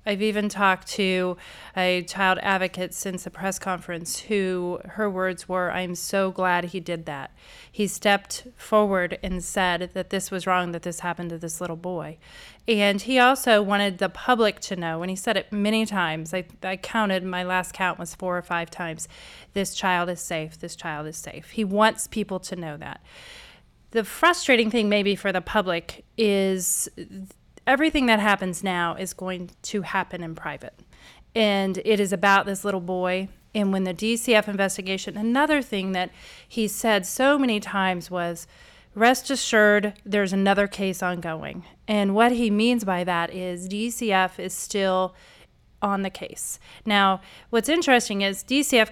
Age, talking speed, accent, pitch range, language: 30-49, 170 wpm, American, 180-215 Hz, English